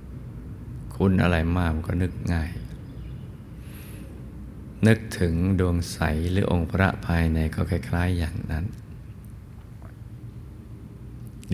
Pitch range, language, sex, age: 80-100 Hz, Thai, male, 60-79